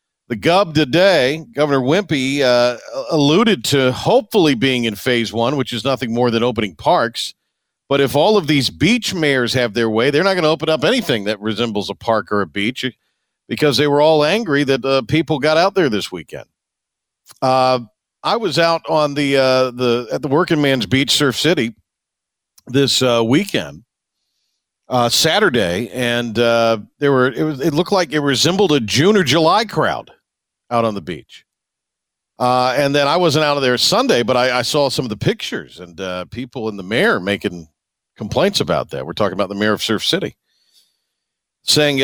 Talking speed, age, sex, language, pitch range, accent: 190 wpm, 50-69, male, English, 120-155 Hz, American